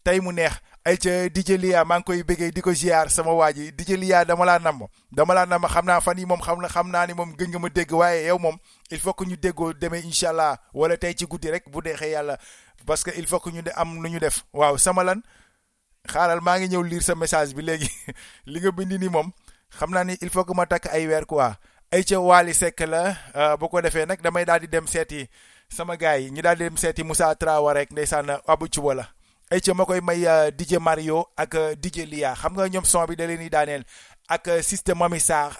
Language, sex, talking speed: Italian, male, 155 wpm